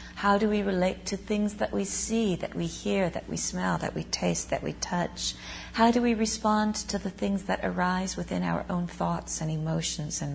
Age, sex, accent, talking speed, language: 40-59, female, American, 215 wpm, English